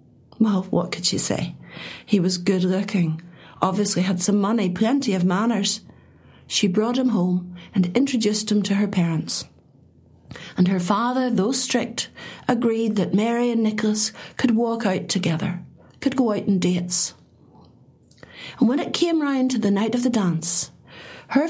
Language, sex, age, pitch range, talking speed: English, female, 60-79, 180-225 Hz, 155 wpm